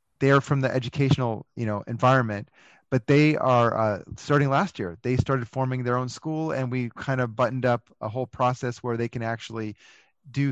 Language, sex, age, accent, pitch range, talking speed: English, male, 30-49, American, 120-145 Hz, 195 wpm